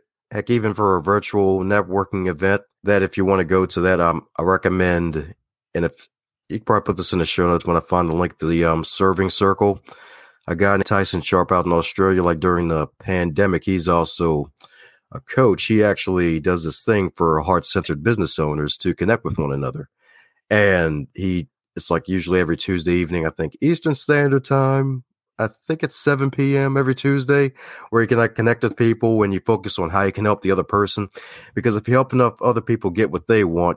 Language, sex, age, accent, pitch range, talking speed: English, male, 30-49, American, 90-115 Hz, 210 wpm